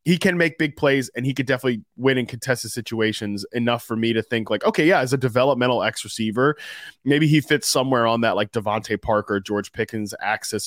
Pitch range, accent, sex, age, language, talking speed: 115-155 Hz, American, male, 20-39, English, 215 wpm